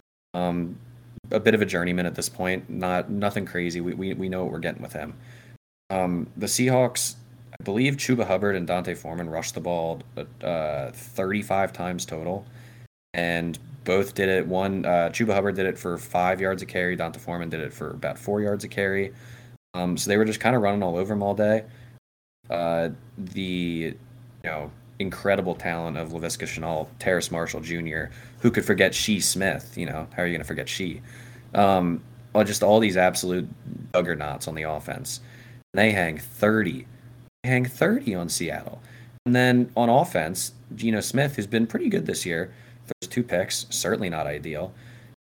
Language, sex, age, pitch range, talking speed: English, male, 20-39, 90-120 Hz, 185 wpm